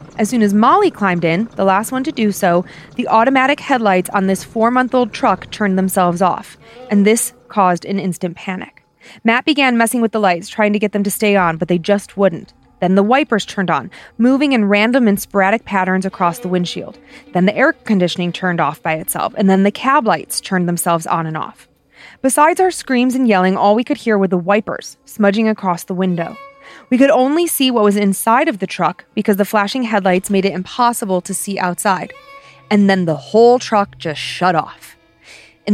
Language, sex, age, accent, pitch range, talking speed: English, female, 20-39, American, 190-245 Hz, 205 wpm